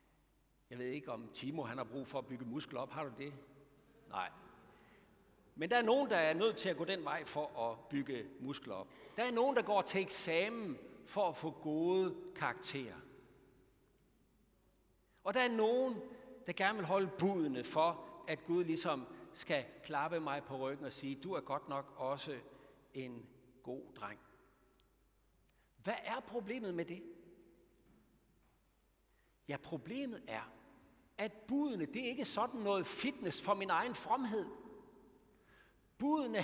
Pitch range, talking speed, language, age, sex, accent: 150-240 Hz, 155 wpm, Danish, 60-79, male, native